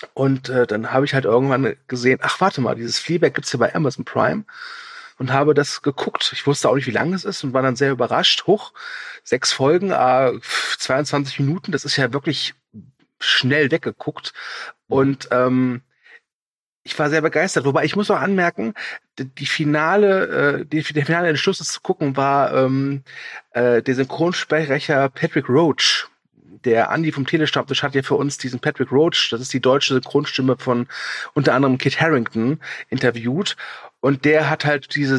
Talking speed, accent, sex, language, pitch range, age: 175 wpm, German, male, German, 130-160 Hz, 40-59